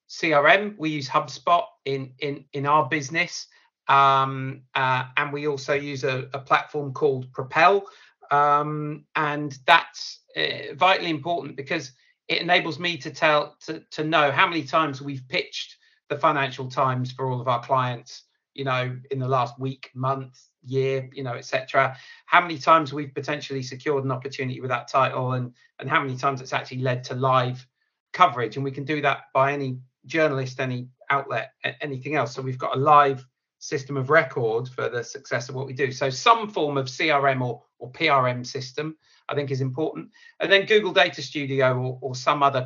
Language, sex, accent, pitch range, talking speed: English, male, British, 130-160 Hz, 185 wpm